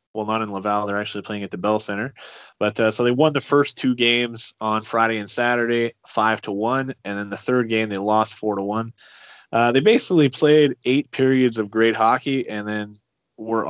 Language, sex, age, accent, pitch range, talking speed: English, male, 20-39, American, 105-115 Hz, 215 wpm